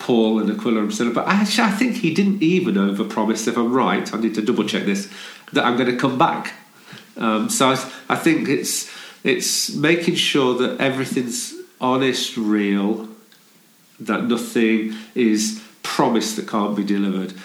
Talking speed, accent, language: 165 wpm, British, English